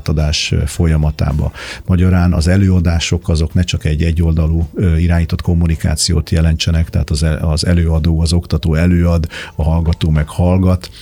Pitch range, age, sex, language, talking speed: 80-90 Hz, 50-69, male, Hungarian, 125 wpm